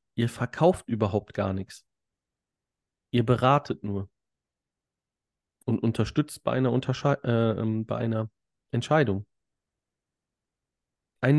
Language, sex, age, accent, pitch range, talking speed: German, male, 30-49, German, 110-135 Hz, 85 wpm